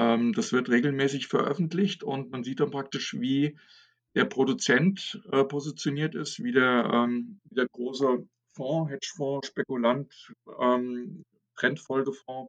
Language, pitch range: German, 125-150 Hz